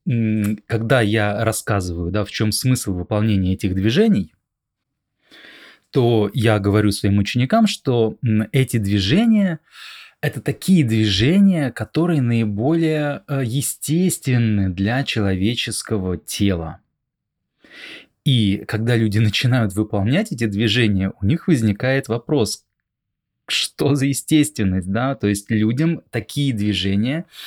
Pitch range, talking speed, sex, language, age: 105-135 Hz, 100 wpm, male, Russian, 20-39